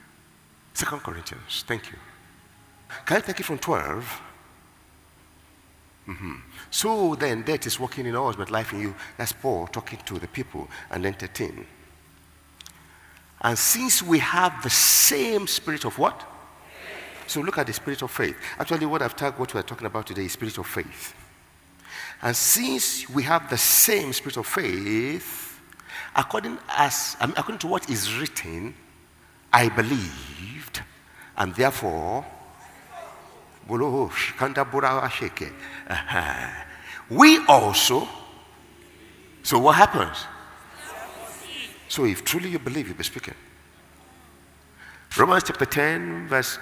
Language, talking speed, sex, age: English, 125 wpm, male, 50-69